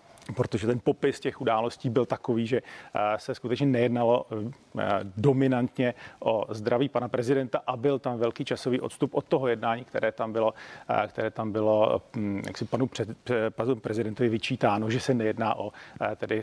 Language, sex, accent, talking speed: Czech, male, native, 145 wpm